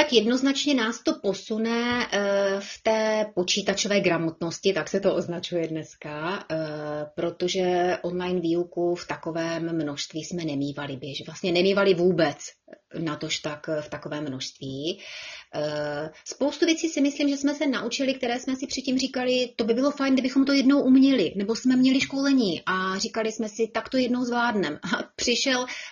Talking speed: 150 wpm